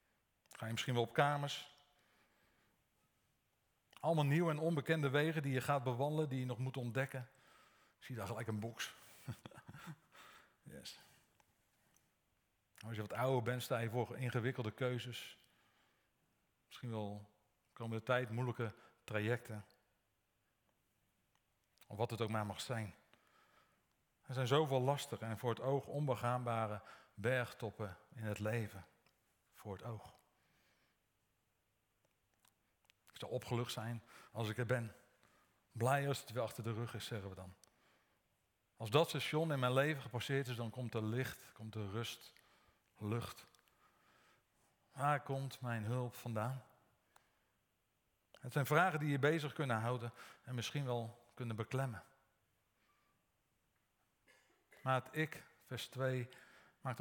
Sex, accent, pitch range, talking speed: male, Dutch, 110-135 Hz, 135 wpm